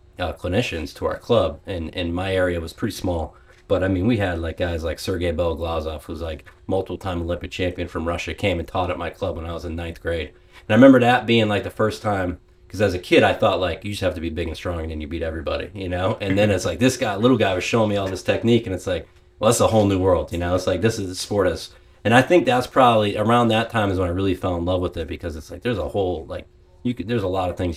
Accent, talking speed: American, 290 wpm